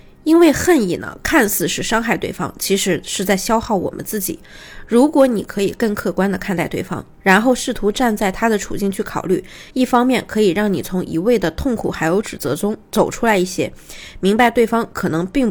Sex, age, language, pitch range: female, 20-39, Chinese, 185-235 Hz